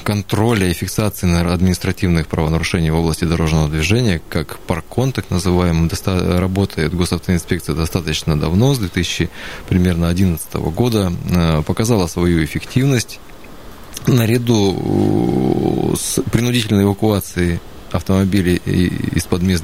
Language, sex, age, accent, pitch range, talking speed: Russian, male, 20-39, native, 85-105 Hz, 100 wpm